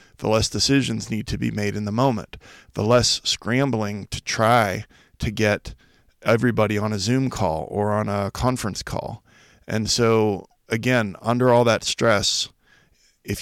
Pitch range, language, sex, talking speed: 105-125 Hz, English, male, 155 wpm